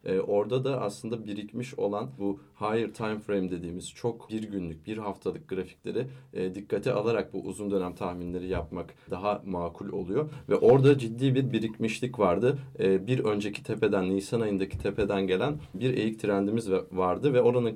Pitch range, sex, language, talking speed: 95-120 Hz, male, Turkish, 150 wpm